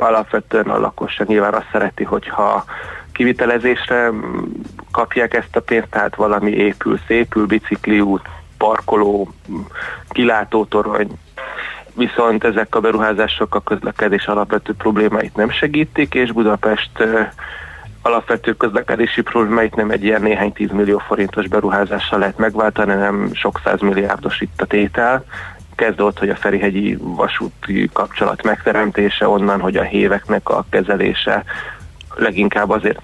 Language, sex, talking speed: Hungarian, male, 115 wpm